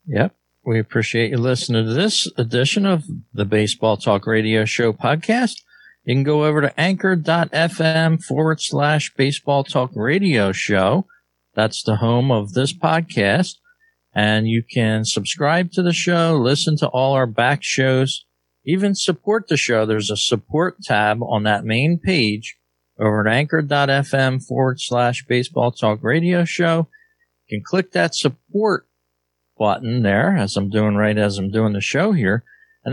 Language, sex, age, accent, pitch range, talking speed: English, male, 50-69, American, 110-165 Hz, 155 wpm